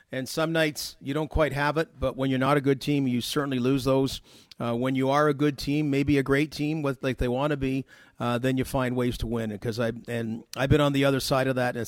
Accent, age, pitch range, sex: American, 40-59, 125-150 Hz, male